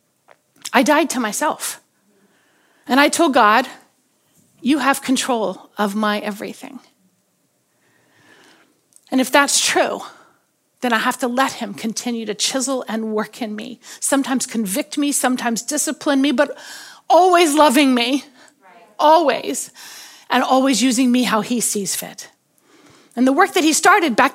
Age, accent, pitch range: 40-59, American, 230-315 Hz